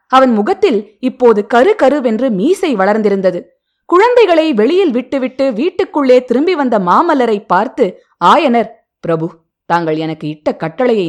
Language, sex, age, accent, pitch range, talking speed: Tamil, female, 20-39, native, 180-270 Hz, 115 wpm